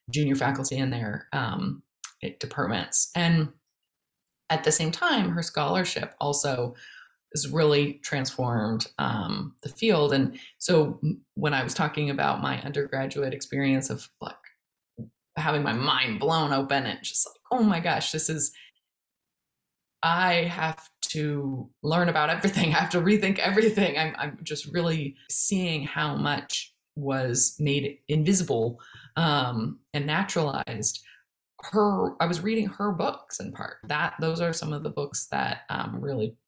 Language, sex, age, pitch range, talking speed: English, female, 20-39, 135-165 Hz, 145 wpm